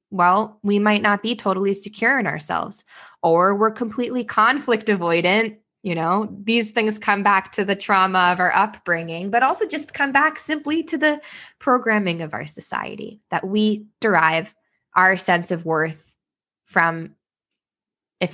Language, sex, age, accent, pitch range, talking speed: English, female, 20-39, American, 175-225 Hz, 155 wpm